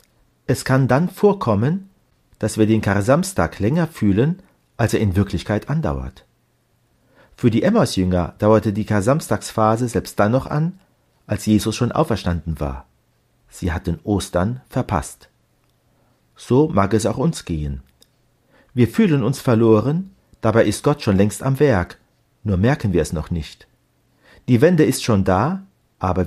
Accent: German